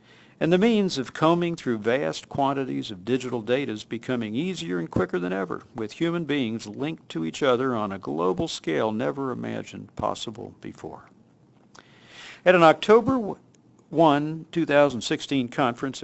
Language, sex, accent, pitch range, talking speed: English, male, American, 110-150 Hz, 145 wpm